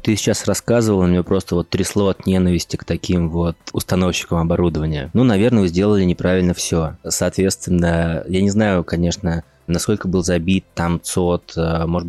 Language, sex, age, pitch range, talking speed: Russian, male, 20-39, 85-95 Hz, 155 wpm